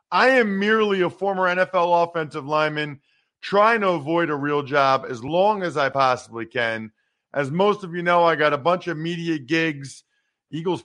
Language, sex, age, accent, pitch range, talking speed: English, male, 40-59, American, 140-190 Hz, 185 wpm